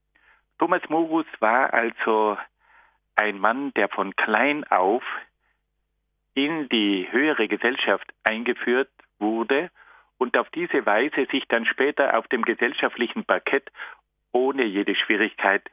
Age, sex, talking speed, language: 50-69, male, 115 wpm, German